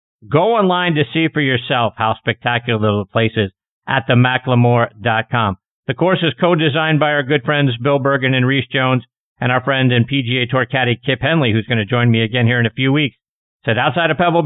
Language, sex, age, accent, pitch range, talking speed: English, male, 50-69, American, 120-165 Hz, 210 wpm